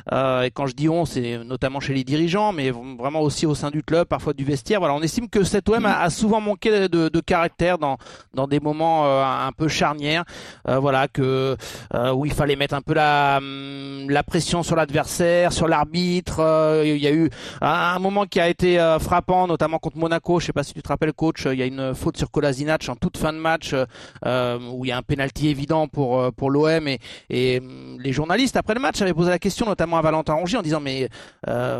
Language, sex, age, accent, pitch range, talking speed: French, male, 40-59, French, 145-180 Hz, 225 wpm